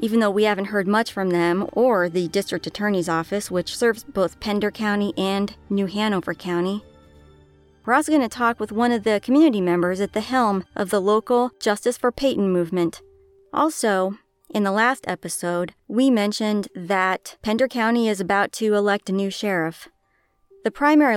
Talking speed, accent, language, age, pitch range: 175 wpm, American, English, 30-49, 185-235 Hz